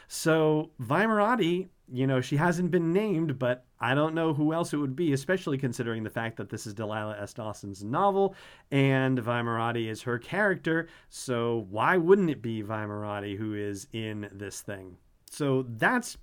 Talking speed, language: 170 wpm, English